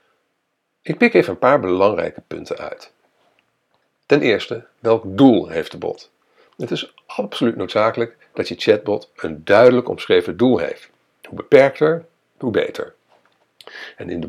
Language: Dutch